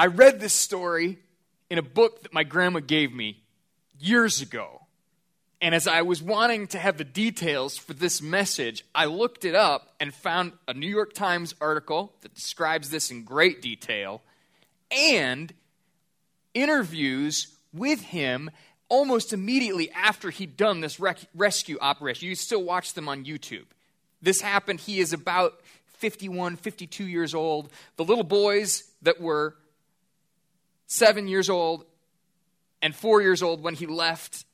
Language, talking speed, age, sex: English, 150 wpm, 20-39, male